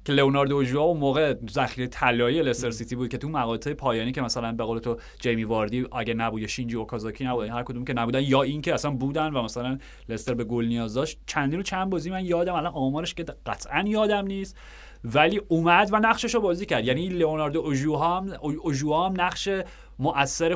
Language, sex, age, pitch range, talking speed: Persian, male, 30-49, 115-155 Hz, 195 wpm